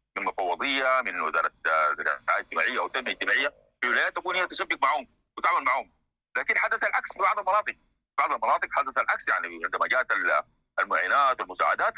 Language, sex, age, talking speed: English, male, 50-69, 150 wpm